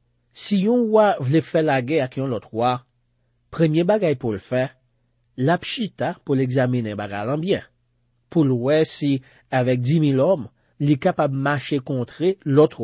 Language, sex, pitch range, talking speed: French, male, 120-160 Hz, 155 wpm